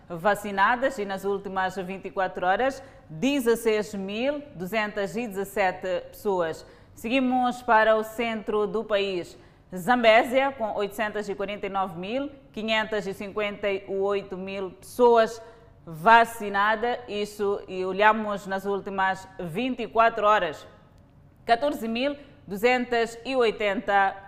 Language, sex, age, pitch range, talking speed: Portuguese, female, 20-39, 200-235 Hz, 70 wpm